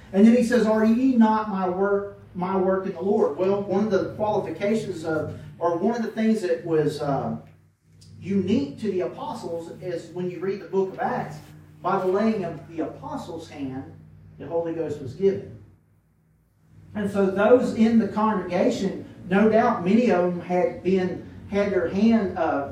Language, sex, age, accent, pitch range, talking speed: English, male, 40-59, American, 125-205 Hz, 180 wpm